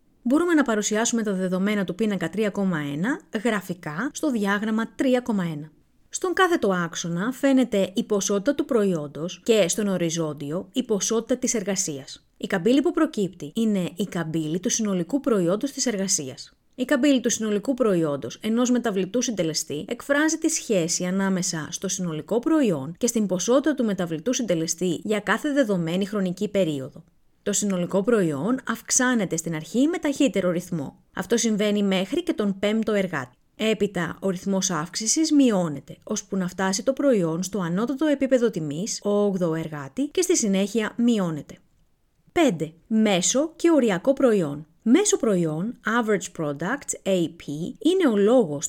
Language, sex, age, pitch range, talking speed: Greek, female, 30-49, 175-245 Hz, 140 wpm